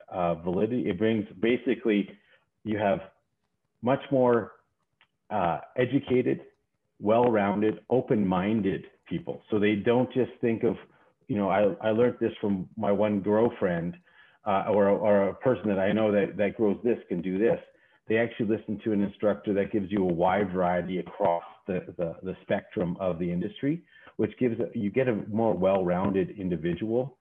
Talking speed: 160 wpm